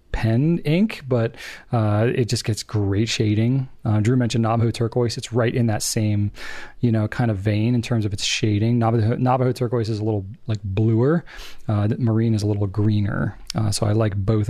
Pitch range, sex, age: 110-130 Hz, male, 30-49